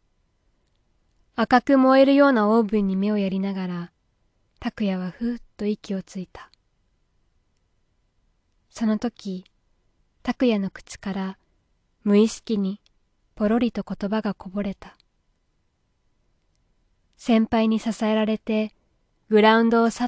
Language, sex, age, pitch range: Japanese, female, 20-39, 170-225 Hz